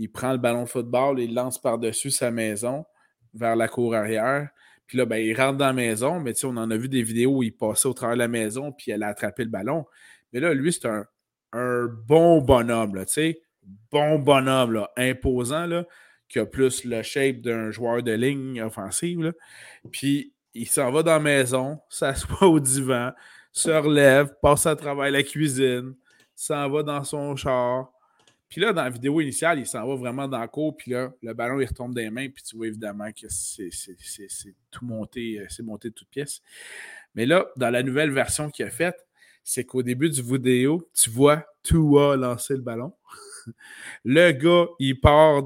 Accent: Canadian